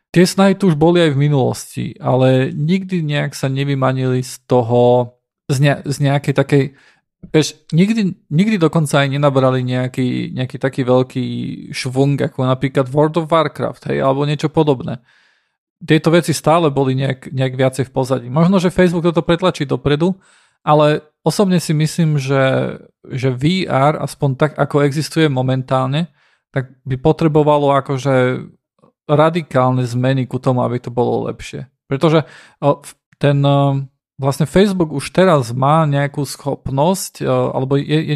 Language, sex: Slovak, male